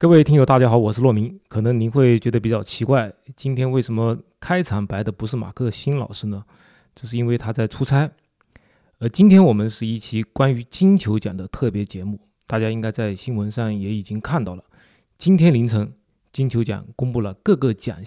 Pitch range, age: 105-135 Hz, 20-39